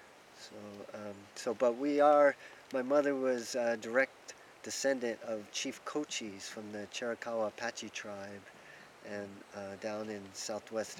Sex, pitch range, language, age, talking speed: male, 110-135 Hz, English, 40-59, 135 wpm